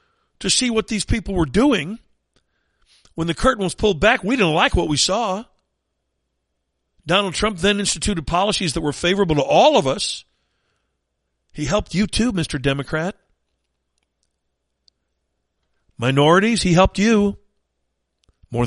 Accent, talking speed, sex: American, 135 wpm, male